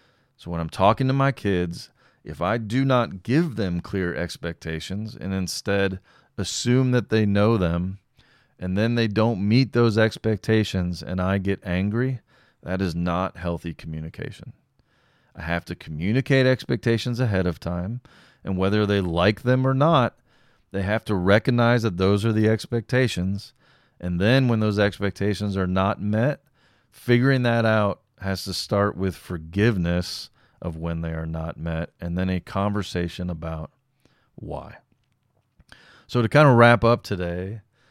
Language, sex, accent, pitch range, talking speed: English, male, American, 90-120 Hz, 155 wpm